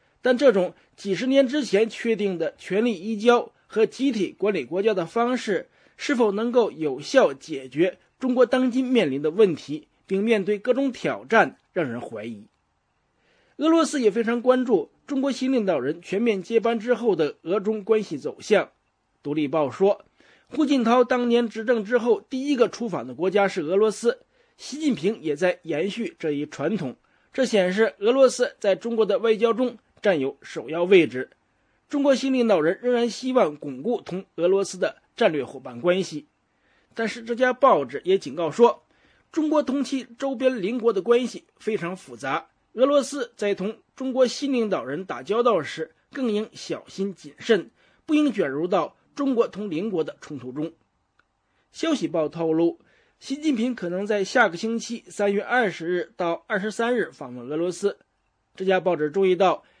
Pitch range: 185-255 Hz